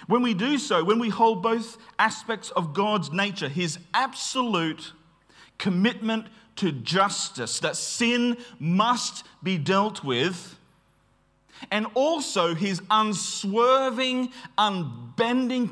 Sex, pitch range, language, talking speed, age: male, 145-220 Hz, English, 105 wpm, 40-59